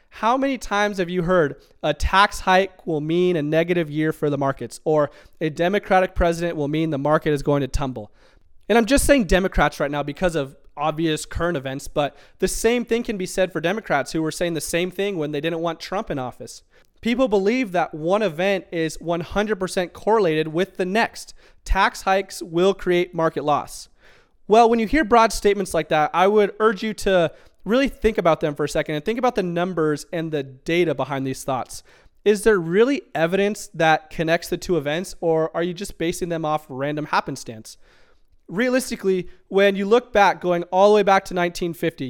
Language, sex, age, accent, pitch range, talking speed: English, male, 20-39, American, 155-200 Hz, 200 wpm